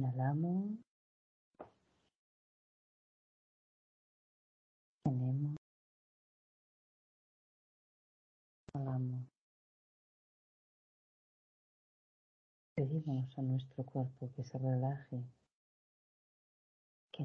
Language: Spanish